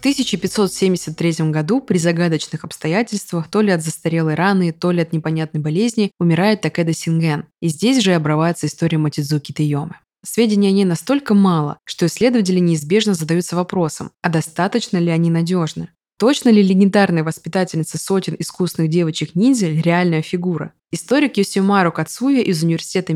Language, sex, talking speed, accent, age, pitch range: Russian, female, 150 wpm, native, 20-39, 160-195 Hz